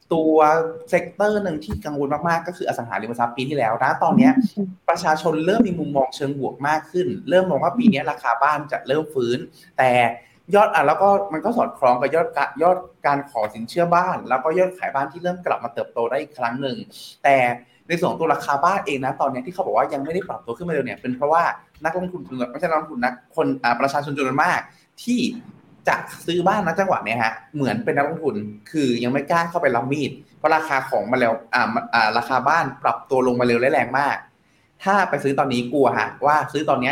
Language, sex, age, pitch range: Thai, male, 20-39, 130-175 Hz